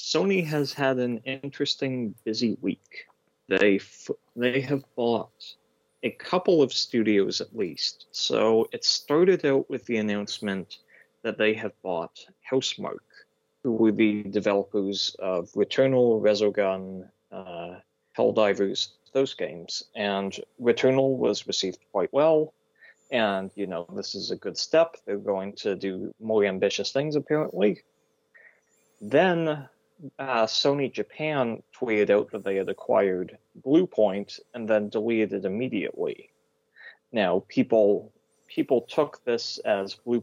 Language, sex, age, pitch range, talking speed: English, male, 30-49, 100-135 Hz, 130 wpm